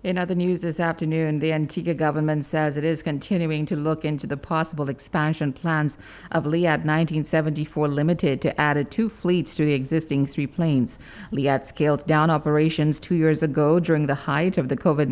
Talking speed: 185 wpm